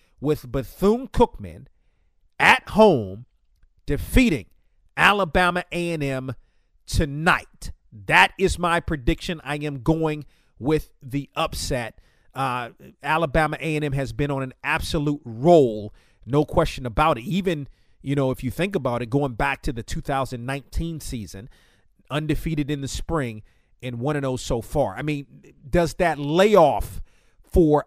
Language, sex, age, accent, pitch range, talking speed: English, male, 40-59, American, 135-165 Hz, 125 wpm